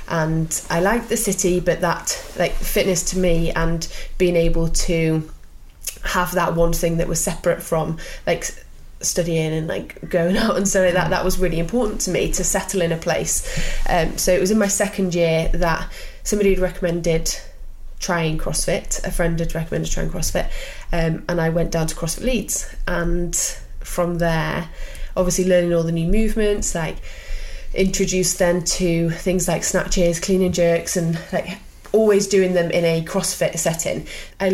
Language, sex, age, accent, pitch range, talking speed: English, female, 20-39, British, 165-185 Hz, 175 wpm